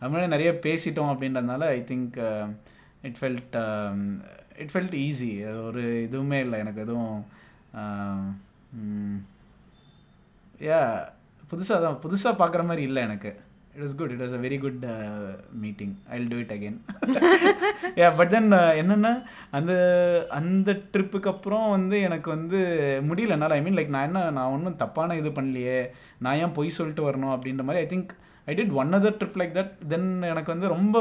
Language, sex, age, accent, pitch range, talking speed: Tamil, male, 20-39, native, 125-165 Hz, 155 wpm